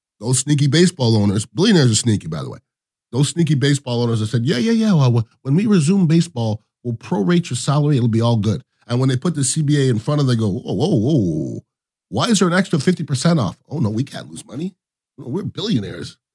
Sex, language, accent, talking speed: male, English, American, 225 wpm